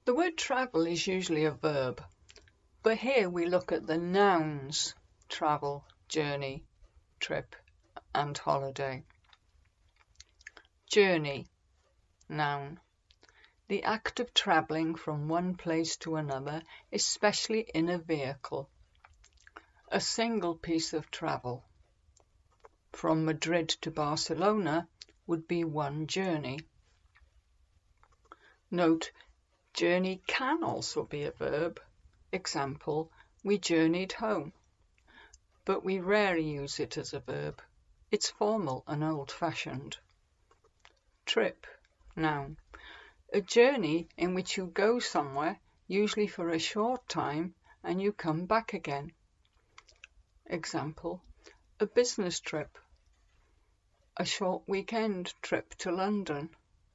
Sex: female